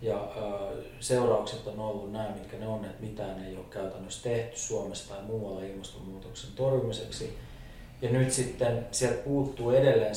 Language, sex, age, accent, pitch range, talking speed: Finnish, male, 30-49, native, 100-120 Hz, 155 wpm